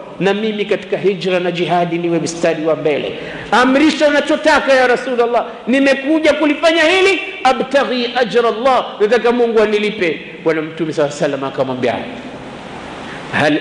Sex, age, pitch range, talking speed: male, 50-69, 165-235 Hz, 130 wpm